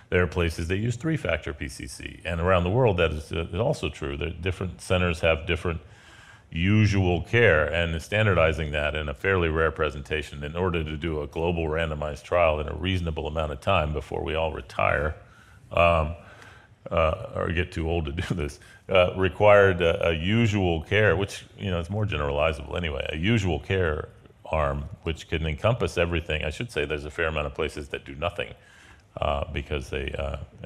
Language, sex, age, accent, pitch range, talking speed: English, male, 40-59, American, 75-100 Hz, 185 wpm